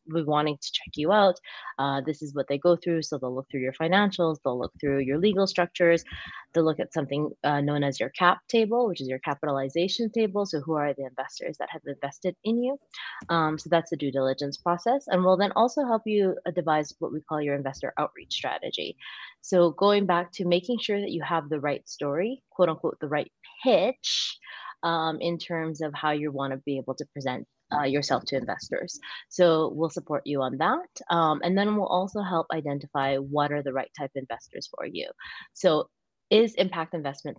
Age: 20-39